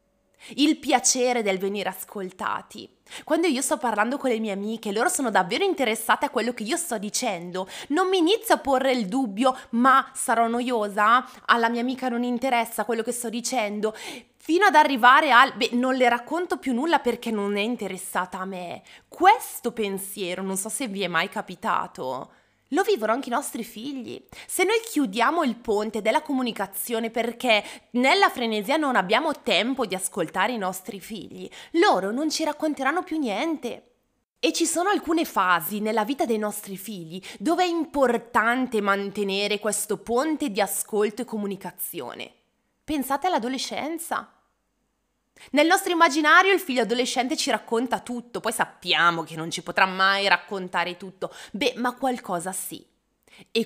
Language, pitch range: Italian, 210-280 Hz